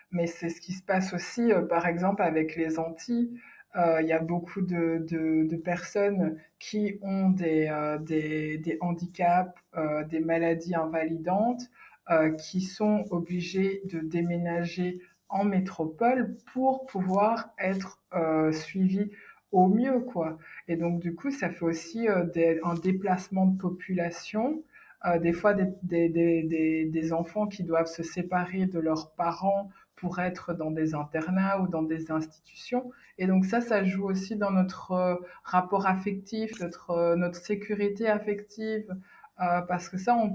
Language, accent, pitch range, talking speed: French, French, 165-195 Hz, 160 wpm